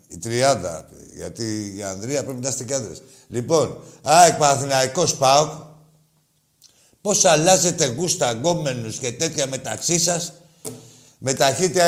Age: 60-79